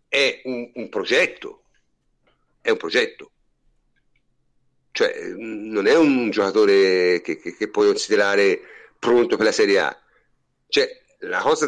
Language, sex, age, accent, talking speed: Italian, male, 50-69, native, 130 wpm